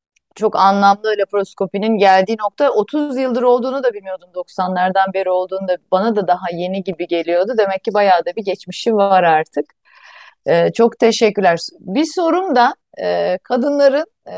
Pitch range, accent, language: 190-245 Hz, native, Turkish